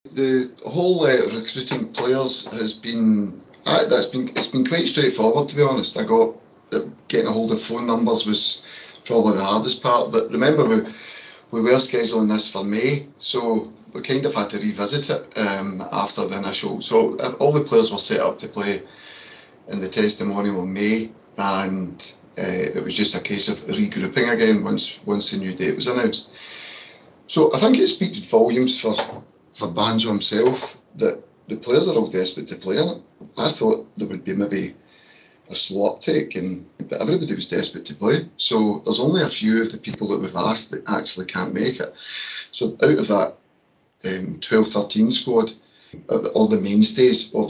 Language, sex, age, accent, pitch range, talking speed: English, male, 30-49, British, 100-140 Hz, 185 wpm